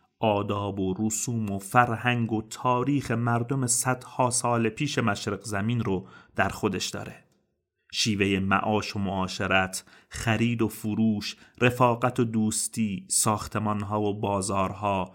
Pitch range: 100-125 Hz